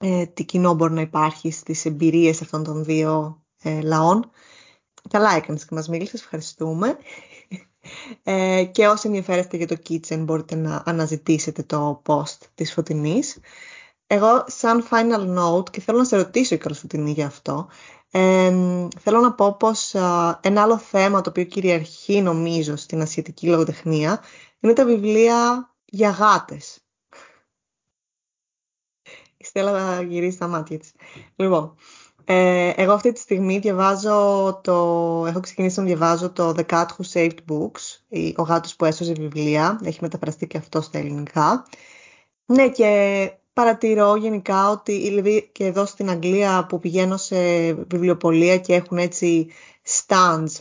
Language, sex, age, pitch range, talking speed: Greek, female, 20-39, 160-200 Hz, 140 wpm